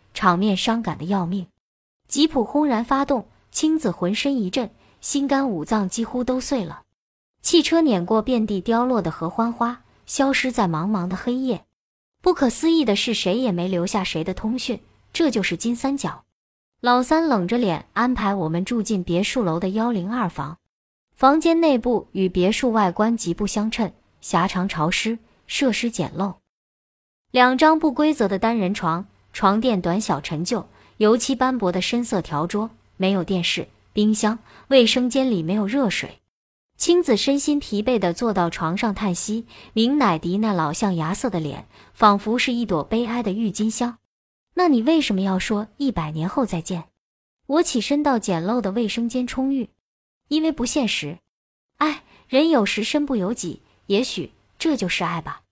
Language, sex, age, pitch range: Chinese, male, 20-39, 190-255 Hz